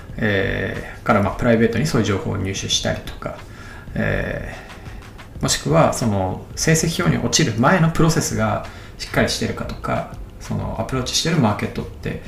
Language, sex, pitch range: Japanese, male, 100-120 Hz